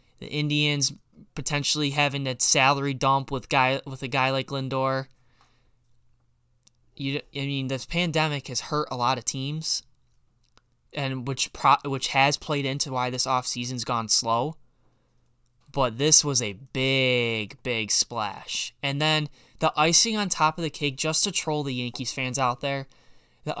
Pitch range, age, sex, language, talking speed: 125-150 Hz, 10-29, male, English, 160 wpm